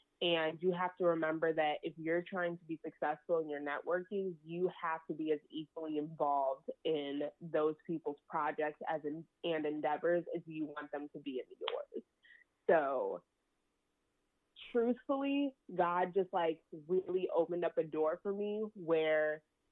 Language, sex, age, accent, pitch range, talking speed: English, female, 20-39, American, 155-190 Hz, 155 wpm